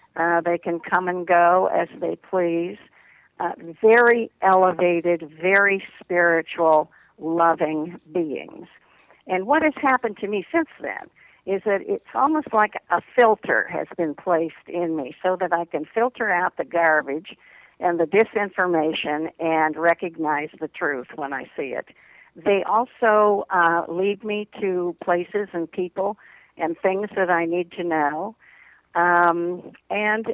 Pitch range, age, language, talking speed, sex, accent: 170-215 Hz, 60-79, English, 145 wpm, female, American